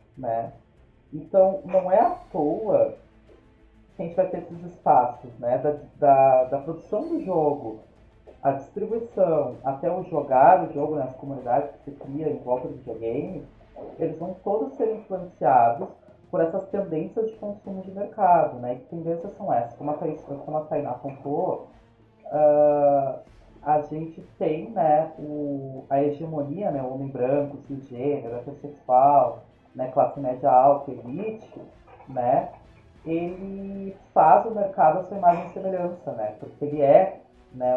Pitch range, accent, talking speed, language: 135-180 Hz, Brazilian, 150 wpm, Portuguese